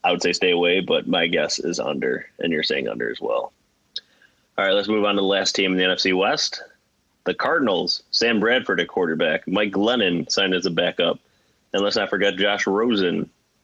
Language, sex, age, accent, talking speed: English, male, 20-39, American, 205 wpm